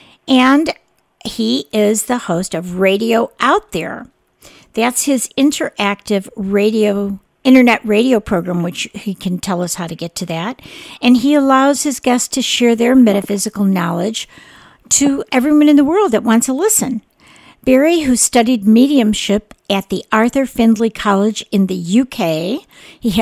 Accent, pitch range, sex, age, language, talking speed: American, 195-250 Hz, female, 50-69, English, 150 wpm